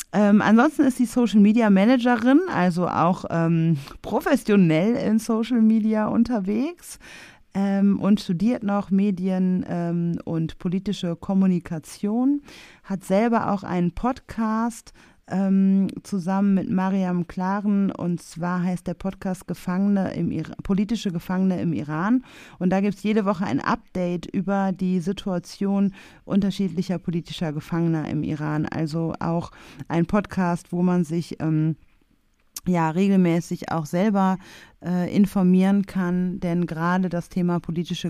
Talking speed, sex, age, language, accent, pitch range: 125 wpm, female, 30-49, German, German, 160-195 Hz